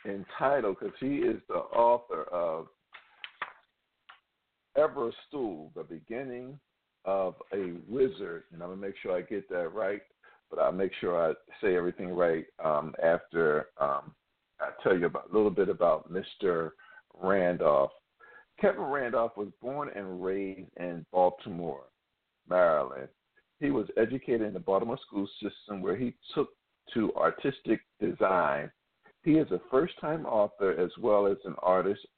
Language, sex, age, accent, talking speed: English, male, 50-69, American, 140 wpm